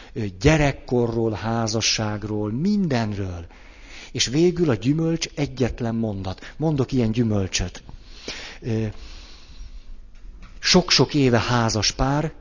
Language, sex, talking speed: Hungarian, male, 75 wpm